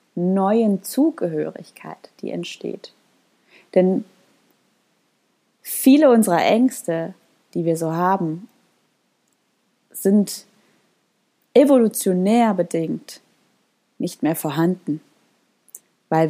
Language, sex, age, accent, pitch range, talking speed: German, female, 30-49, German, 180-220 Hz, 70 wpm